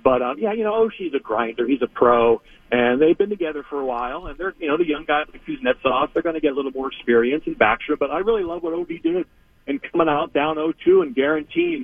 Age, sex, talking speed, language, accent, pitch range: 40-59, male, 275 wpm, English, American, 135-215 Hz